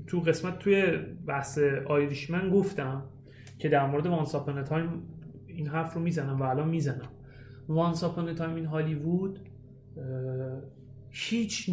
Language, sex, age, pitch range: Persian, male, 30-49, 130-185 Hz